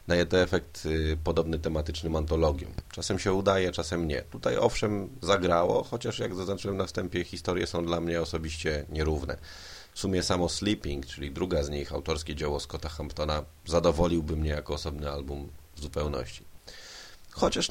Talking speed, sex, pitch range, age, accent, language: 155 wpm, male, 75-90 Hz, 30-49, native, Polish